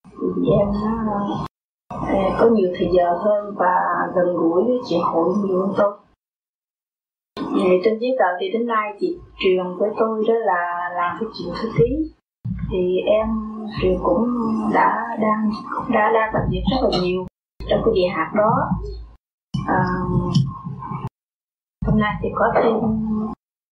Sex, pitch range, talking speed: female, 180-225 Hz, 140 wpm